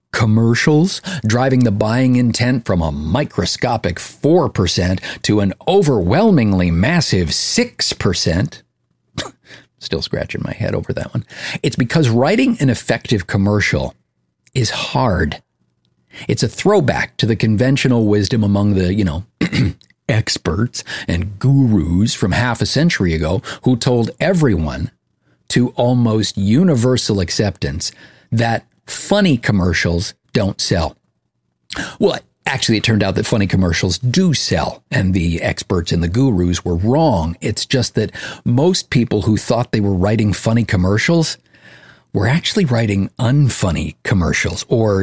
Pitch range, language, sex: 90-125 Hz, English, male